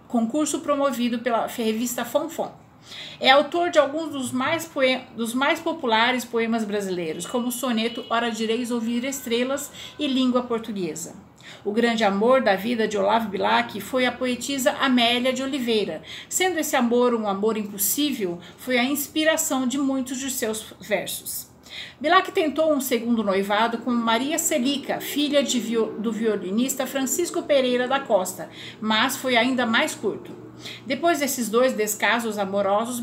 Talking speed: 140 wpm